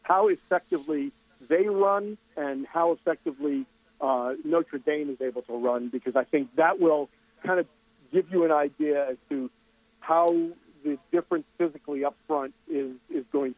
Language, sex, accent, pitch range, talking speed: English, male, American, 140-170 Hz, 160 wpm